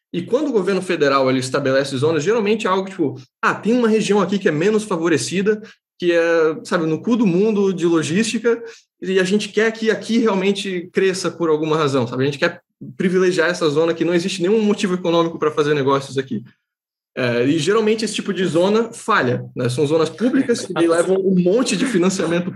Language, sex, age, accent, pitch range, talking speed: Portuguese, male, 20-39, Brazilian, 155-205 Hz, 200 wpm